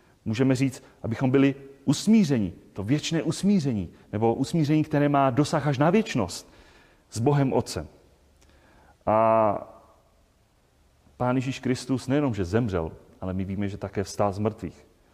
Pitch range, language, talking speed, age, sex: 105-135 Hz, Czech, 135 wpm, 30-49, male